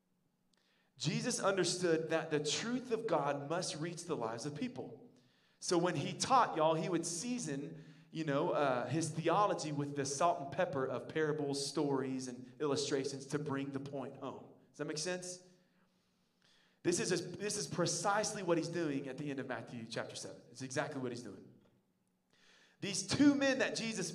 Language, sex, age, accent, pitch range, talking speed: English, male, 30-49, American, 145-185 Hz, 170 wpm